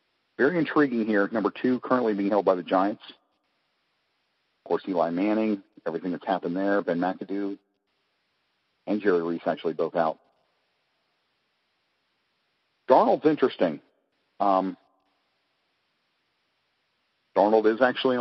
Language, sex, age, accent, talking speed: English, male, 40-59, American, 110 wpm